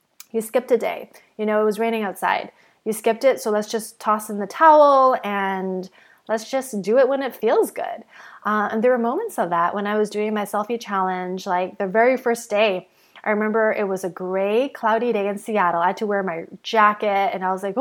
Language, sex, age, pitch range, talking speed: English, female, 20-39, 195-245 Hz, 230 wpm